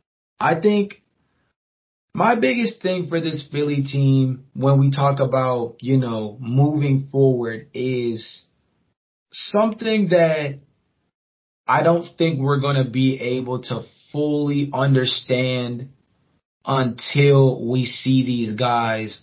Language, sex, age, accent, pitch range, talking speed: English, male, 20-39, American, 120-150 Hz, 110 wpm